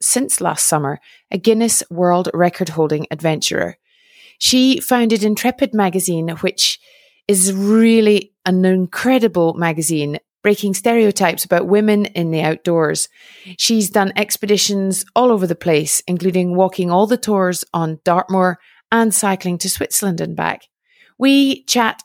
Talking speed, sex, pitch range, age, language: 130 wpm, female, 175-210 Hz, 30-49, English